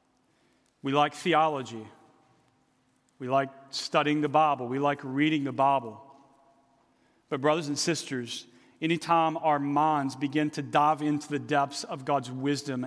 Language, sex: English, male